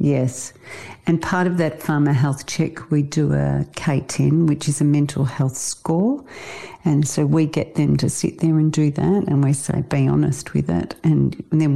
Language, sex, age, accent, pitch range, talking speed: English, female, 50-69, Australian, 135-160 Hz, 200 wpm